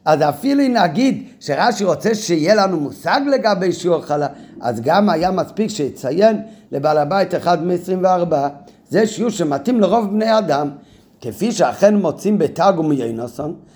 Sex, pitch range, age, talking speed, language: male, 155-220 Hz, 50-69, 140 wpm, Hebrew